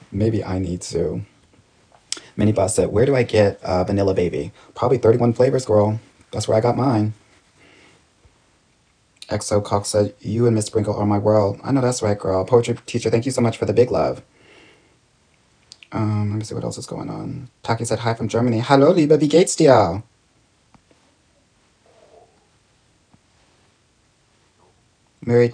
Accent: American